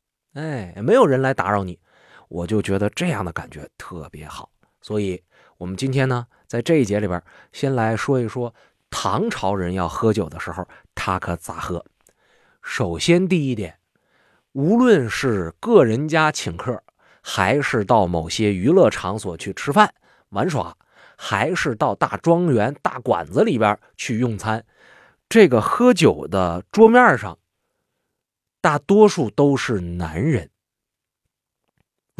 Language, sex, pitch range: Chinese, male, 95-155 Hz